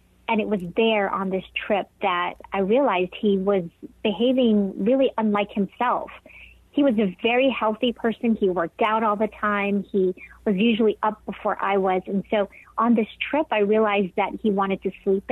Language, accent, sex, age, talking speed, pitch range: English, American, female, 40-59, 185 wpm, 195-225 Hz